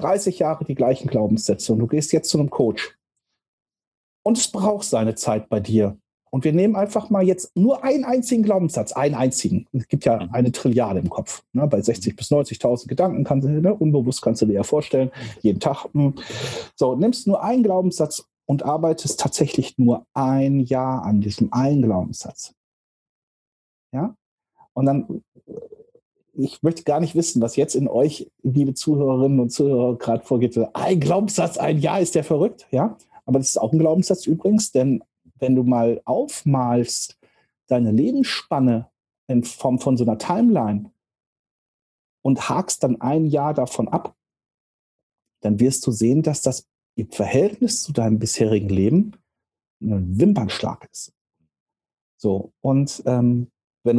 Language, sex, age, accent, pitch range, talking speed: German, male, 40-59, German, 120-170 Hz, 160 wpm